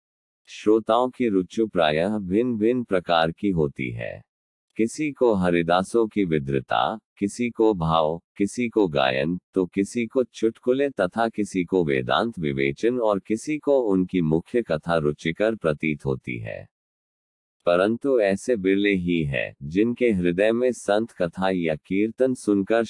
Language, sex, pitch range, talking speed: Hindi, male, 80-115 Hz, 140 wpm